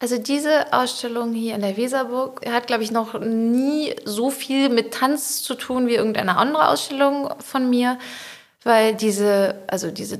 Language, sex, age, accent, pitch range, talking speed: German, female, 30-49, German, 215-260 Hz, 165 wpm